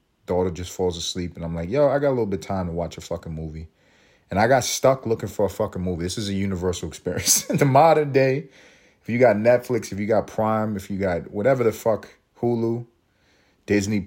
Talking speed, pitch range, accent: 230 wpm, 90-115 Hz, American